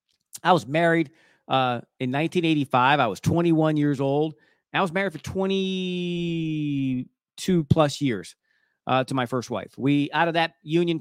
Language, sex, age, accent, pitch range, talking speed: English, male, 40-59, American, 135-170 Hz, 155 wpm